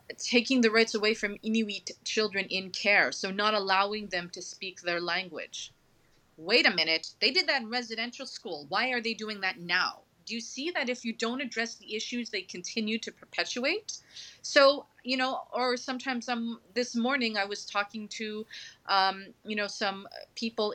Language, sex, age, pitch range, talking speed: English, female, 30-49, 190-235 Hz, 180 wpm